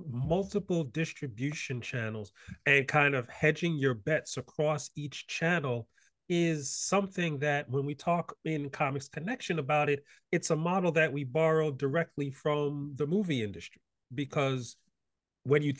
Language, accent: English, American